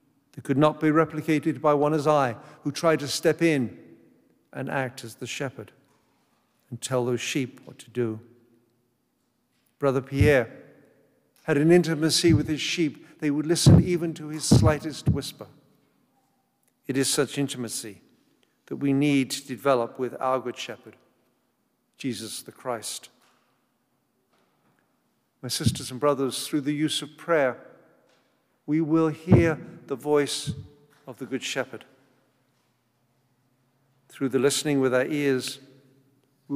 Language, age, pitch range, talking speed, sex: English, 50-69, 125-150 Hz, 135 wpm, male